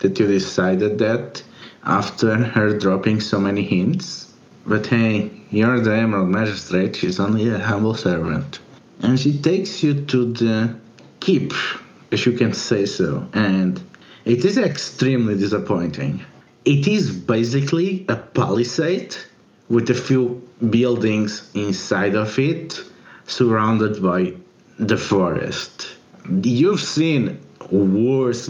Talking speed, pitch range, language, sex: 120 wpm, 110-130 Hz, English, male